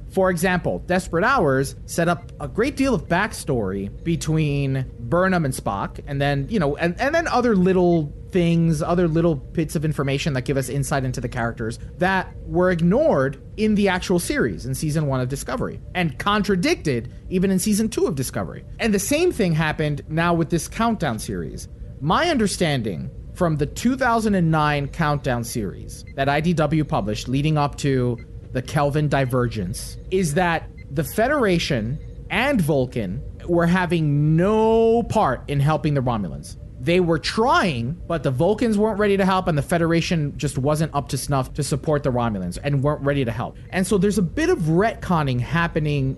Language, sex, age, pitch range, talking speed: English, male, 30-49, 135-185 Hz, 170 wpm